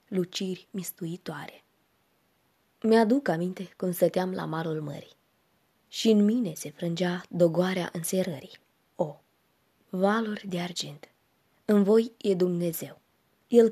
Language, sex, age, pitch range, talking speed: Romanian, female, 20-39, 170-225 Hz, 110 wpm